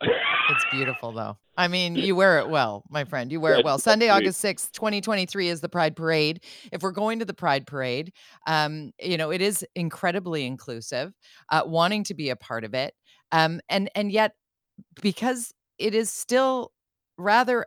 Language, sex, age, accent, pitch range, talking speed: English, female, 40-59, American, 145-195 Hz, 185 wpm